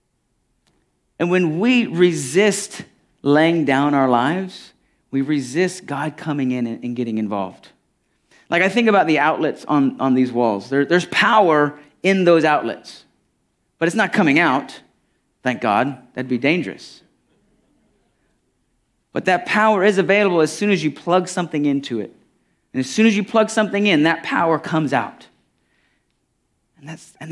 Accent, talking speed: American, 150 wpm